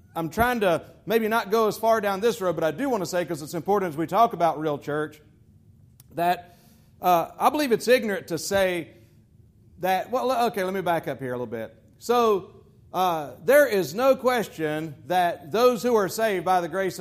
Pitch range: 150-210 Hz